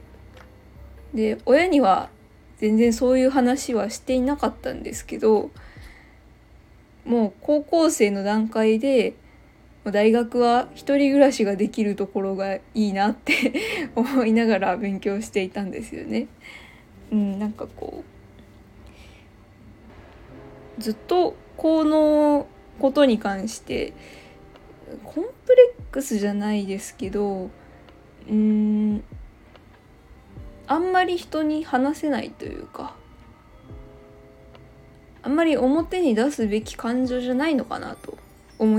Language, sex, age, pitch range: Japanese, female, 20-39, 200-280 Hz